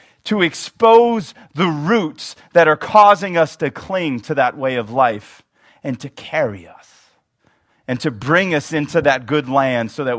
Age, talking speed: 30-49, 170 wpm